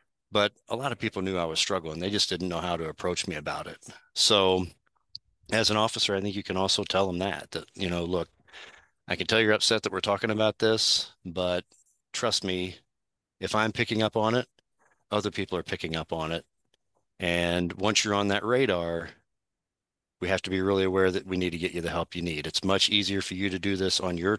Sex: male